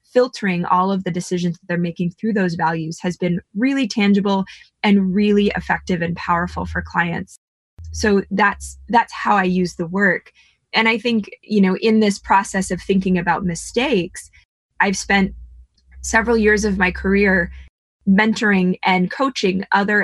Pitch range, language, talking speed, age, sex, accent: 175-210 Hz, English, 160 wpm, 20-39, female, American